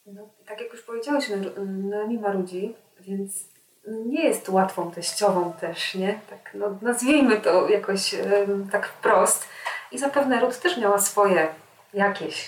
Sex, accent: female, native